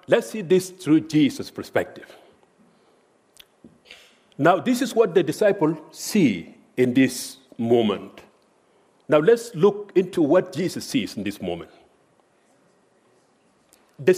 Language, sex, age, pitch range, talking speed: English, male, 50-69, 165-225 Hz, 115 wpm